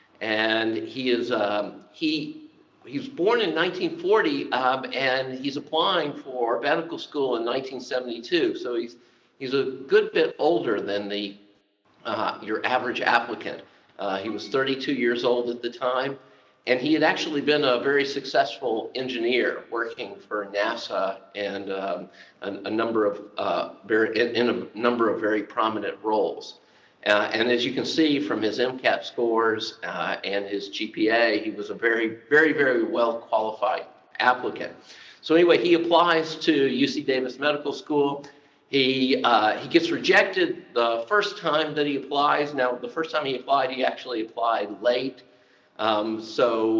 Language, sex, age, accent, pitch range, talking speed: English, male, 50-69, American, 115-155 Hz, 155 wpm